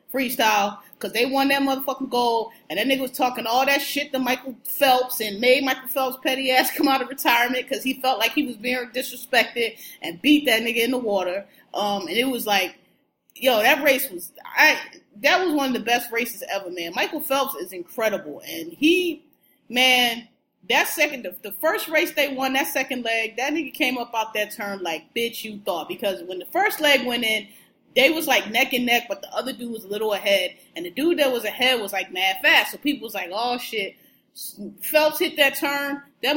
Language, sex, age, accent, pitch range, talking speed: English, female, 20-39, American, 210-275 Hz, 220 wpm